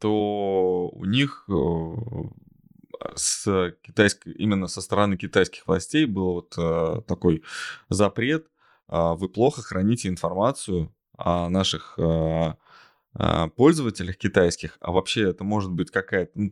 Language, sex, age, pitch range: Russian, male, 20-39, 90-110 Hz